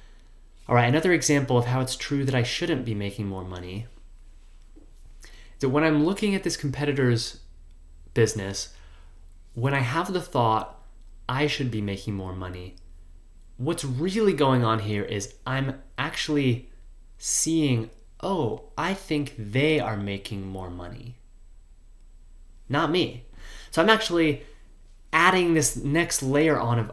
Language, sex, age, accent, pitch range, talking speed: English, male, 30-49, American, 100-145 Hz, 140 wpm